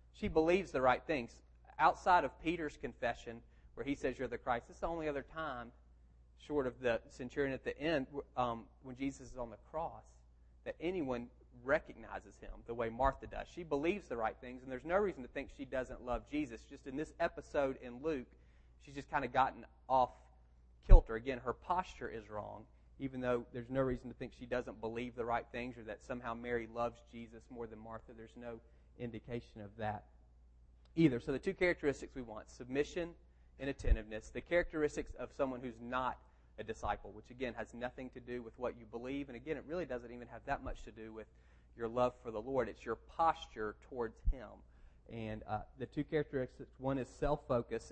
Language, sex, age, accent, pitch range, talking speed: English, male, 30-49, American, 110-135 Hz, 200 wpm